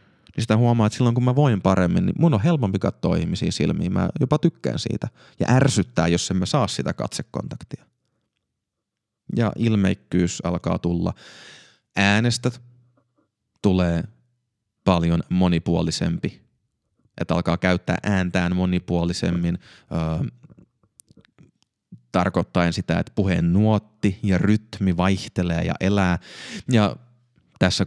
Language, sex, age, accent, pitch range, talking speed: Finnish, male, 30-49, native, 90-115 Hz, 110 wpm